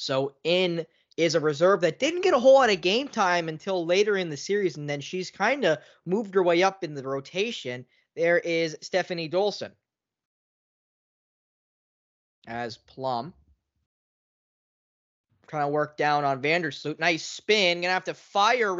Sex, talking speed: male, 160 wpm